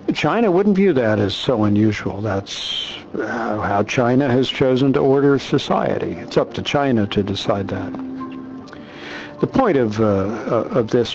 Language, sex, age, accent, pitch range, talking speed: English, male, 60-79, American, 105-130 Hz, 150 wpm